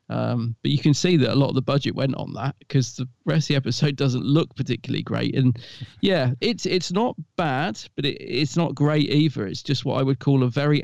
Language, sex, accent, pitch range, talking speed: English, male, British, 125-150 Hz, 245 wpm